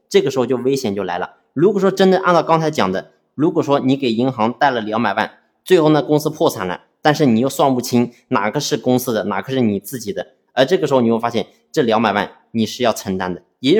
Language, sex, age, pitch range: Chinese, male, 20-39, 110-155 Hz